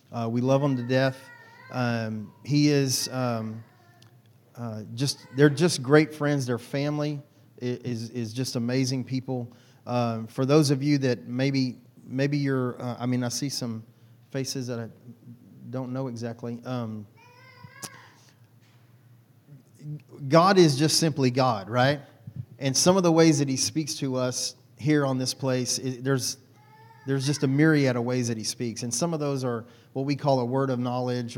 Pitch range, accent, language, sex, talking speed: 120-135 Hz, American, English, male, 170 wpm